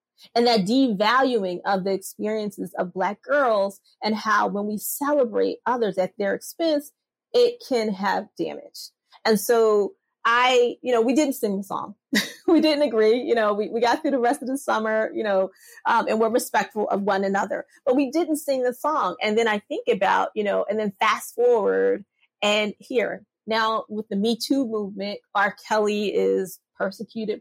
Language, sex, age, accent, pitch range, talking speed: English, female, 30-49, American, 210-280 Hz, 185 wpm